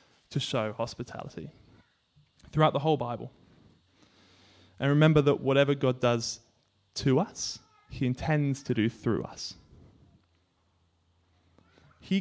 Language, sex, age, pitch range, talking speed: English, male, 20-39, 120-170 Hz, 110 wpm